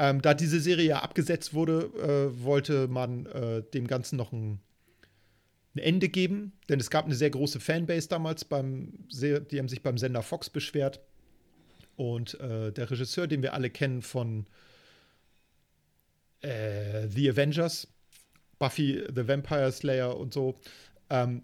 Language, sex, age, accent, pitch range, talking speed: German, male, 40-59, German, 125-150 Hz, 150 wpm